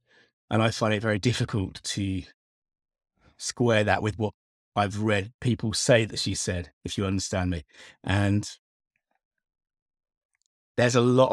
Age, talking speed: 30-49, 140 wpm